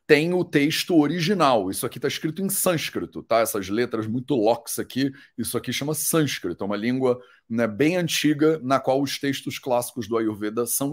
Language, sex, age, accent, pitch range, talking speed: Portuguese, male, 30-49, Brazilian, 125-180 Hz, 185 wpm